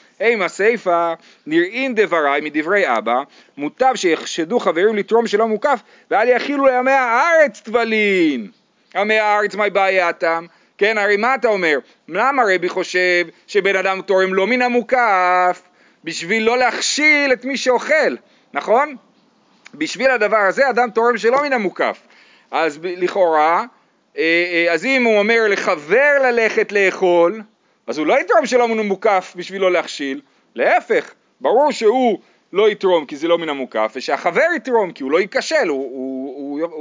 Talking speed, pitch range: 145 wpm, 180-255 Hz